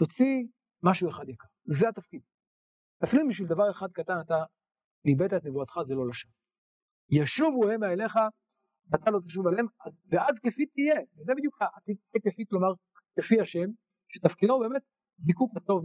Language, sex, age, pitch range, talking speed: Hebrew, male, 50-69, 150-210 Hz, 160 wpm